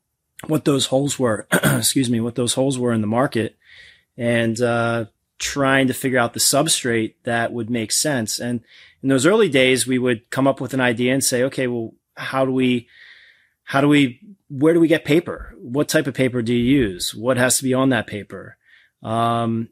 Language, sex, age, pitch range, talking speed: English, male, 30-49, 120-135 Hz, 205 wpm